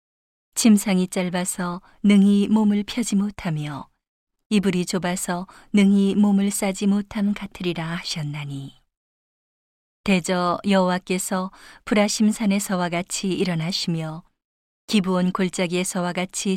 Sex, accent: female, native